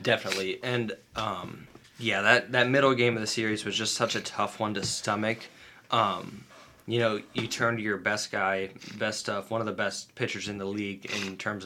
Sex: male